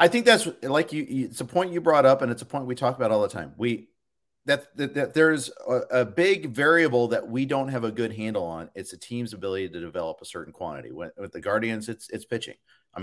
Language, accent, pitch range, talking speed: English, American, 110-145 Hz, 260 wpm